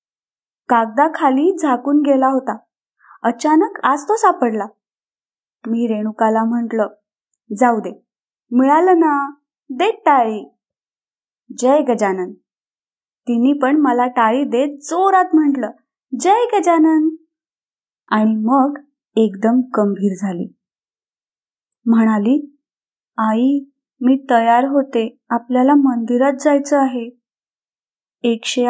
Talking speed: 90 wpm